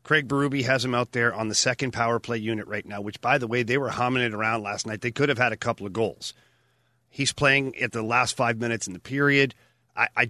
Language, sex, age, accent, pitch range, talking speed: English, male, 40-59, American, 115-140 Hz, 260 wpm